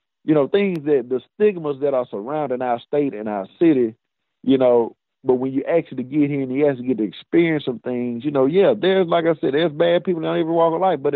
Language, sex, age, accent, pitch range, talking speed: English, male, 50-69, American, 120-150 Hz, 245 wpm